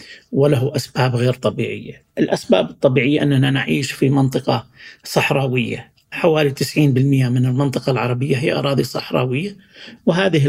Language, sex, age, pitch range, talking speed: Arabic, male, 50-69, 135-160 Hz, 115 wpm